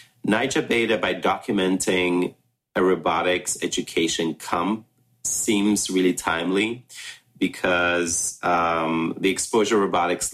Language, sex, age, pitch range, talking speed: English, male, 30-49, 85-100 Hz, 95 wpm